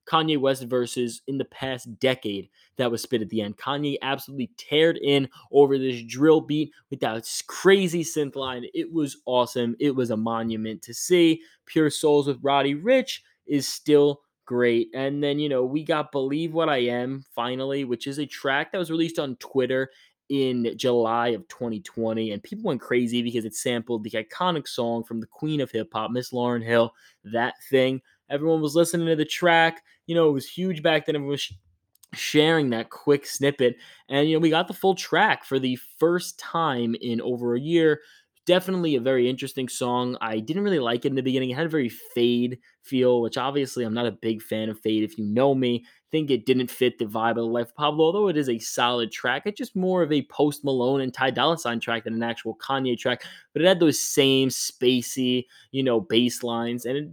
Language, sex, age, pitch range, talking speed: English, male, 20-39, 120-150 Hz, 210 wpm